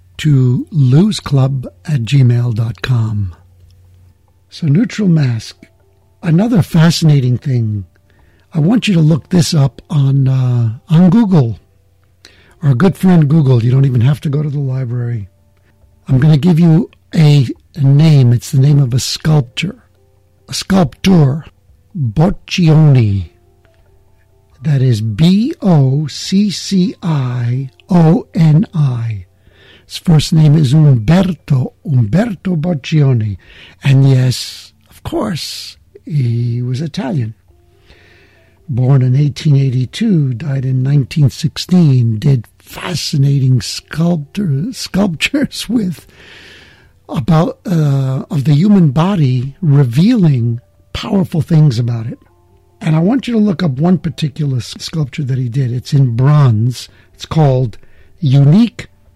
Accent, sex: American, male